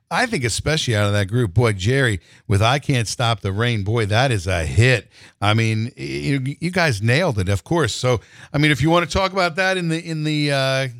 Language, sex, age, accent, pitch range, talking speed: English, male, 50-69, American, 120-170 Hz, 235 wpm